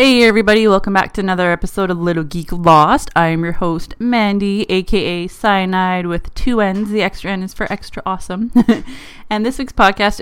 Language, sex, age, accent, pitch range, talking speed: English, female, 20-39, American, 165-205 Hz, 190 wpm